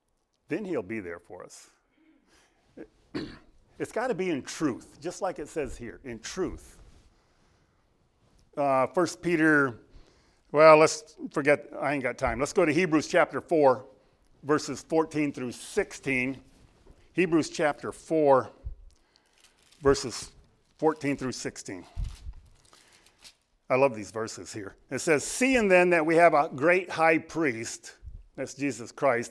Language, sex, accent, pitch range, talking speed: English, male, American, 140-185 Hz, 135 wpm